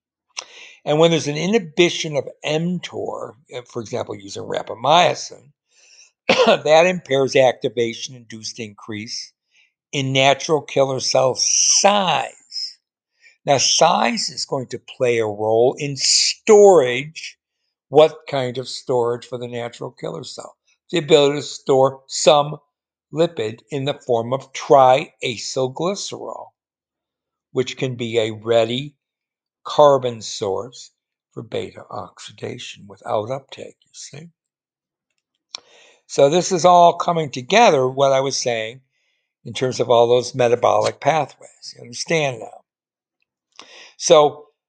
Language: English